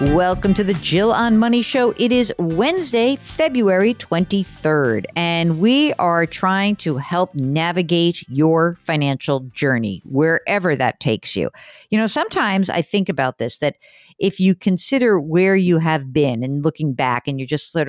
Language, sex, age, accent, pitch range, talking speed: English, female, 50-69, American, 145-215 Hz, 160 wpm